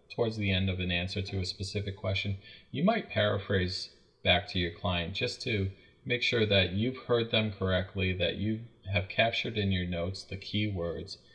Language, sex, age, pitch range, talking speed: English, male, 30-49, 90-110 Hz, 190 wpm